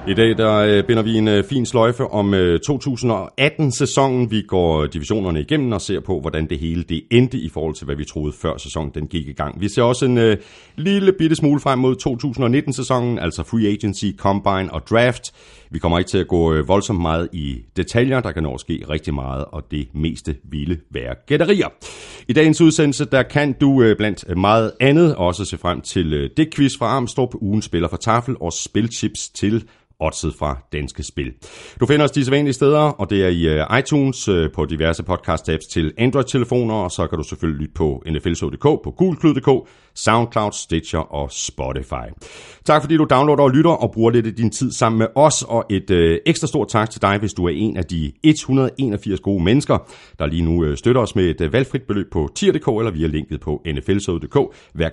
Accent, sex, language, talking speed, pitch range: native, male, Danish, 195 wpm, 80-125 Hz